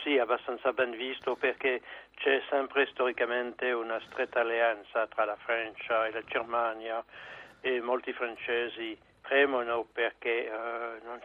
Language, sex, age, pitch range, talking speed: Italian, male, 60-79, 120-140 Hz, 130 wpm